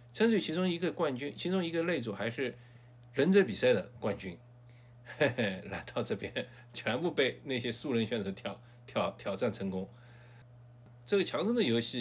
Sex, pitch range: male, 110-130 Hz